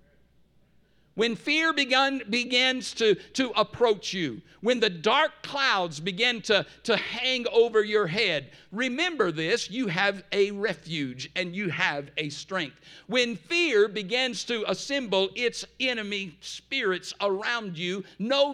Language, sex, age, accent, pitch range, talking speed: English, male, 50-69, American, 185-235 Hz, 130 wpm